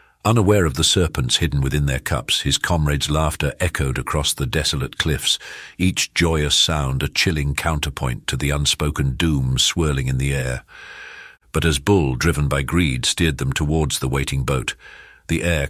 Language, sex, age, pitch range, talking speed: English, male, 50-69, 70-80 Hz, 170 wpm